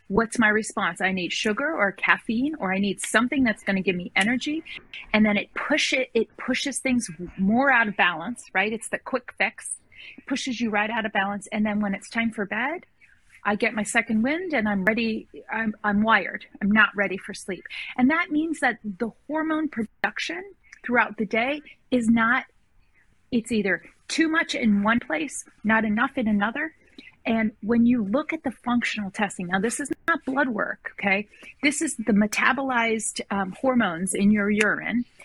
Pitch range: 210-270 Hz